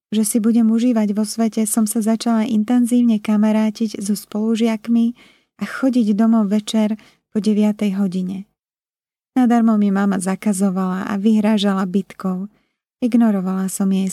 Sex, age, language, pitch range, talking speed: female, 20-39, Slovak, 205-230 Hz, 125 wpm